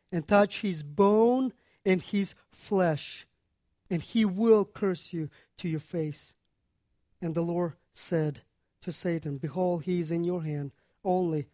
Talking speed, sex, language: 145 wpm, male, English